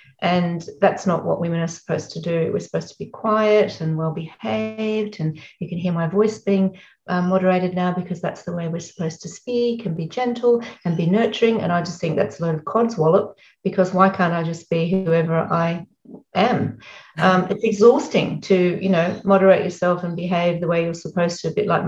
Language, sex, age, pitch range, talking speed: English, female, 40-59, 170-200 Hz, 210 wpm